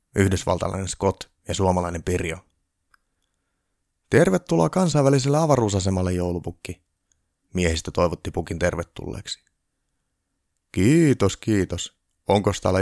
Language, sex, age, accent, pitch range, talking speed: Finnish, male, 30-49, native, 85-105 Hz, 80 wpm